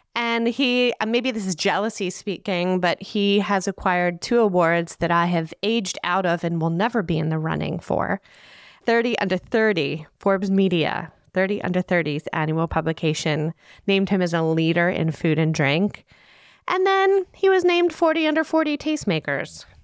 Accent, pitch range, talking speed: American, 165-210 Hz, 165 wpm